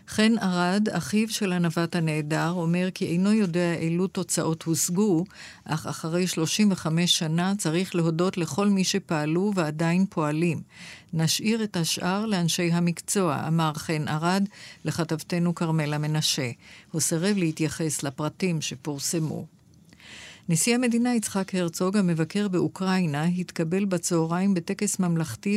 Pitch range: 160-190 Hz